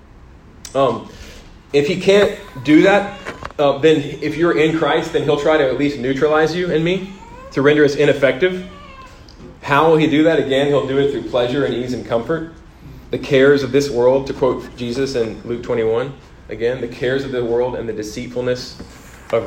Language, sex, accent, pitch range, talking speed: English, male, American, 110-150 Hz, 190 wpm